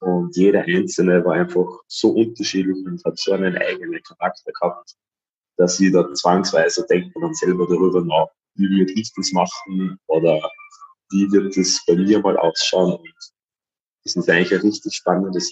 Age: 20-39